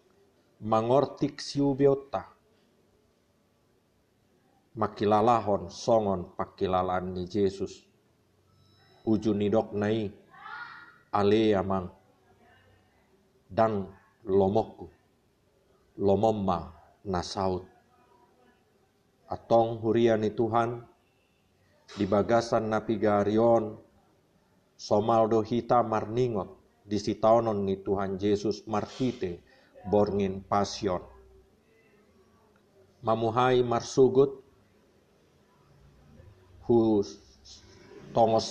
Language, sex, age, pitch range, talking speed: Indonesian, male, 50-69, 100-120 Hz, 50 wpm